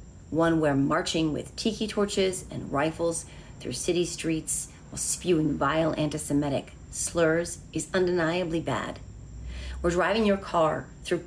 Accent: American